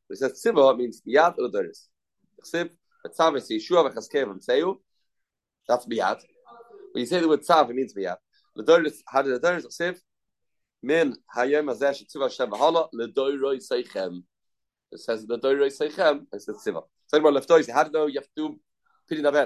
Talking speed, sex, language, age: 180 wpm, male, English, 40-59